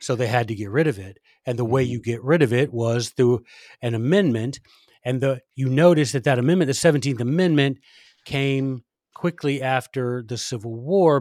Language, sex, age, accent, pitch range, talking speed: English, male, 40-59, American, 120-145 Hz, 195 wpm